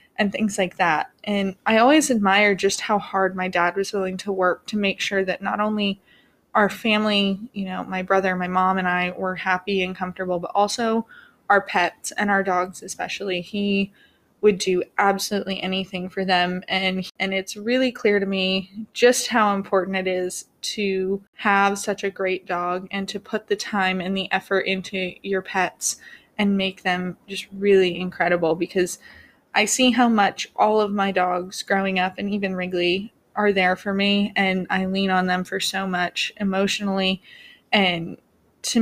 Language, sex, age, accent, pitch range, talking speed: English, female, 20-39, American, 185-205 Hz, 180 wpm